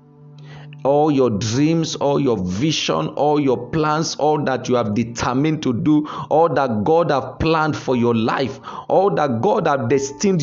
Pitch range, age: 125-165 Hz, 50-69